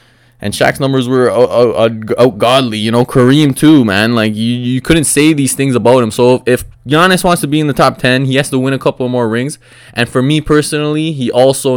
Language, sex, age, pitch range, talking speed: English, male, 20-39, 110-135 Hz, 240 wpm